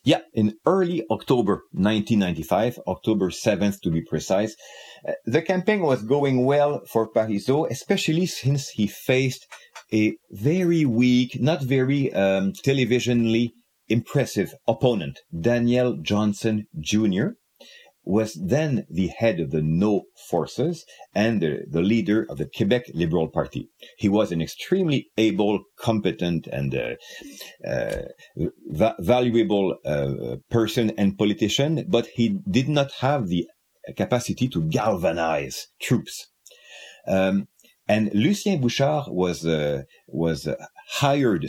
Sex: male